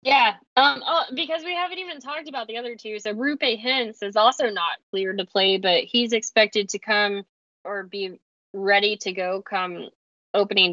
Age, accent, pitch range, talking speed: 10-29, American, 185-215 Hz, 185 wpm